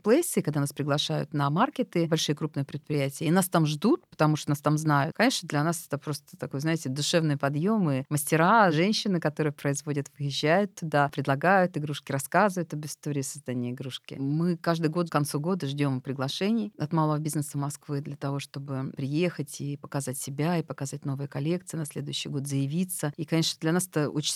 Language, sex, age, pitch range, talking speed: Russian, female, 40-59, 140-165 Hz, 180 wpm